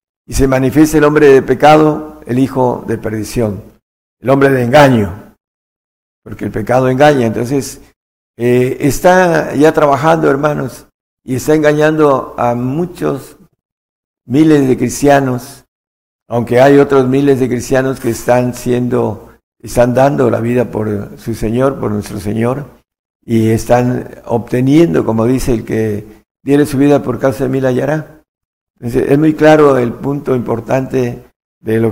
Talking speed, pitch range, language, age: 140 wpm, 120-145 Hz, Spanish, 60-79